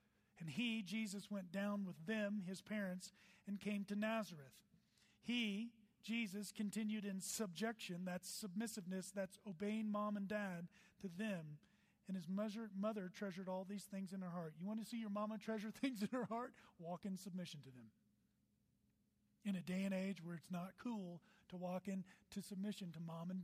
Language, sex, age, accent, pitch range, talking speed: English, male, 40-59, American, 180-210 Hz, 180 wpm